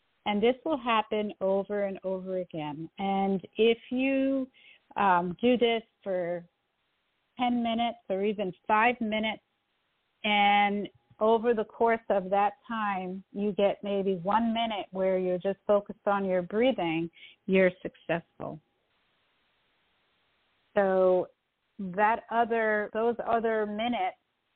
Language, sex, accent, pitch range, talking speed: English, female, American, 185-215 Hz, 115 wpm